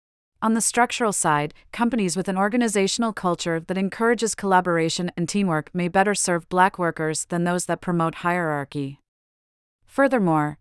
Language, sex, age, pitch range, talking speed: English, female, 30-49, 165-200 Hz, 140 wpm